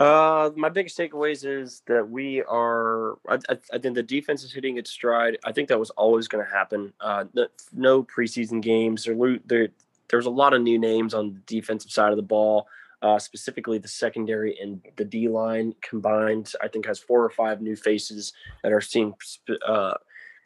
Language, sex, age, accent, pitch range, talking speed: English, male, 20-39, American, 105-125 Hz, 200 wpm